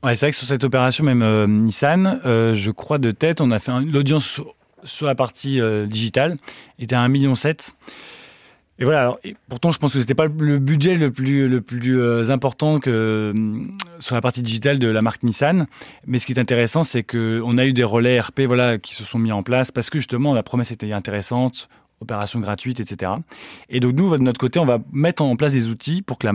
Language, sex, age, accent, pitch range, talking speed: French, male, 20-39, French, 110-135 Hz, 235 wpm